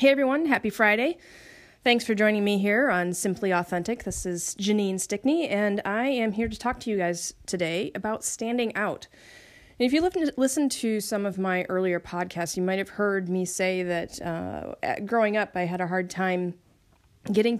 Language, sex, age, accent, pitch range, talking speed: English, female, 30-49, American, 170-215 Hz, 190 wpm